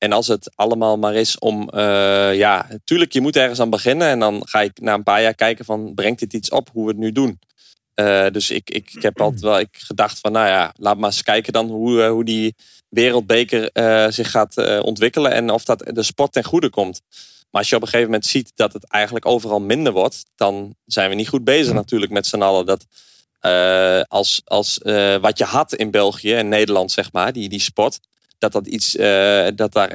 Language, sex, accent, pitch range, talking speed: Dutch, male, Dutch, 105-120 Hz, 235 wpm